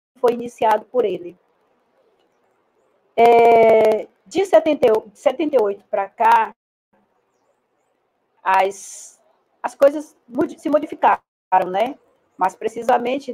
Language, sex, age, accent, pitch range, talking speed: Portuguese, female, 40-59, Brazilian, 205-250 Hz, 80 wpm